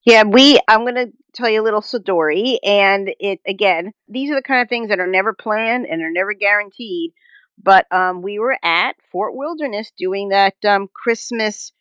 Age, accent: 40-59, American